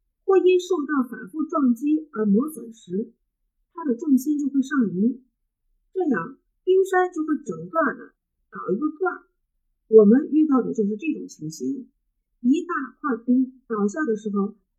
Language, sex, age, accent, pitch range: Chinese, female, 50-69, native, 230-315 Hz